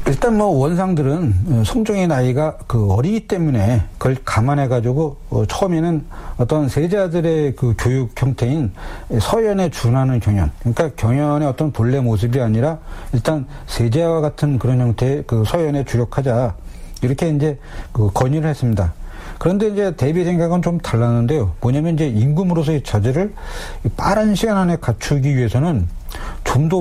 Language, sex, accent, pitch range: Korean, male, native, 115-160 Hz